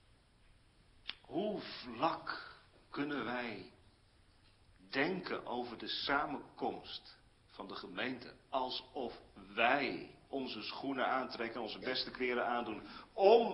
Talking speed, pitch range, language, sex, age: 95 wpm, 110-185 Hz, Dutch, male, 40-59